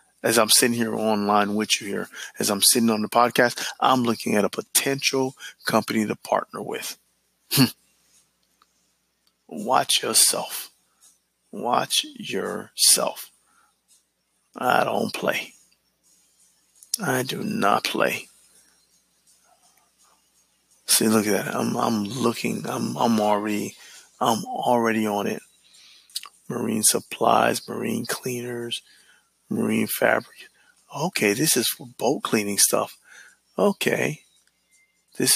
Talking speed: 105 wpm